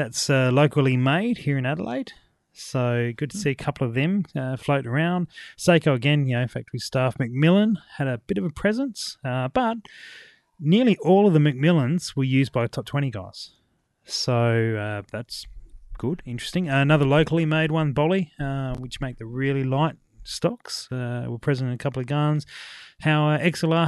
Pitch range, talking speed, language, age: 115-150 Hz, 185 wpm, English, 30-49